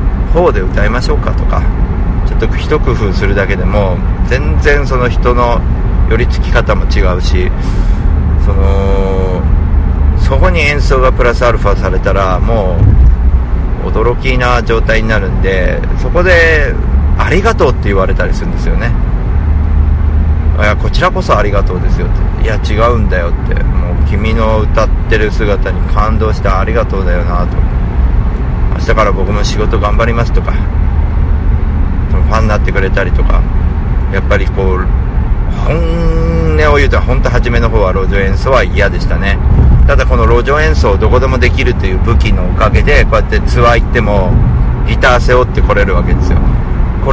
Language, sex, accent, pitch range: Japanese, male, native, 70-100 Hz